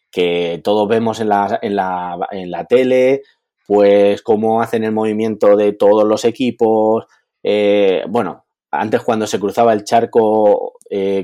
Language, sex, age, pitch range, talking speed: Spanish, male, 30-49, 100-130 Hz, 135 wpm